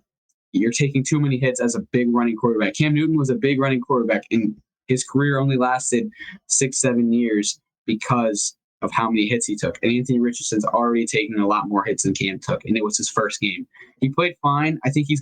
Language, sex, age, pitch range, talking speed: English, male, 10-29, 110-135 Hz, 220 wpm